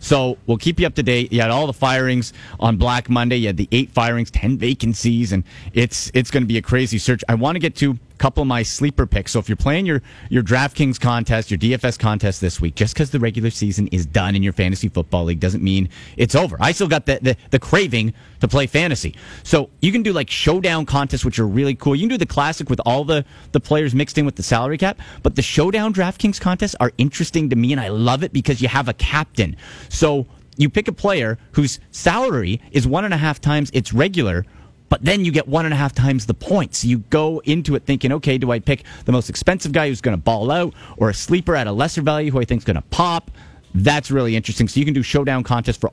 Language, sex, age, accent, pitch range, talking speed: English, male, 30-49, American, 115-150 Hz, 250 wpm